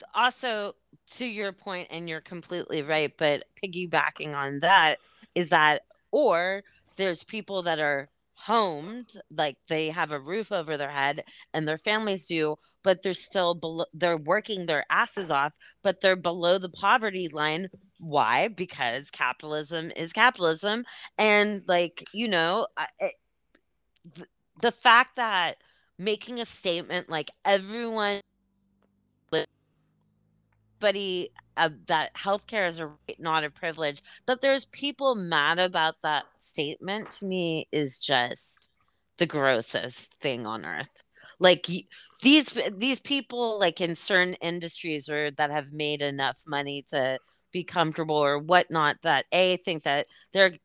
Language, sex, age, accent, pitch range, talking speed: English, female, 20-39, American, 150-195 Hz, 130 wpm